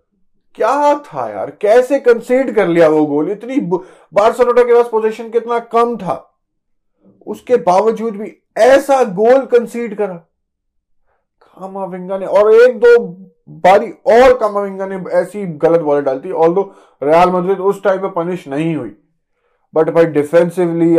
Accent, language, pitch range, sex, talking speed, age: native, Hindi, 165-210 Hz, male, 130 wpm, 20-39